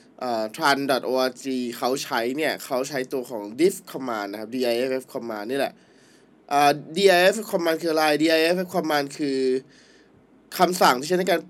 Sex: male